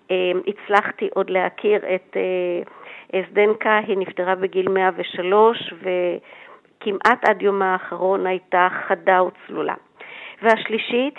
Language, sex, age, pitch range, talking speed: Hebrew, female, 50-69, 185-230 Hz, 90 wpm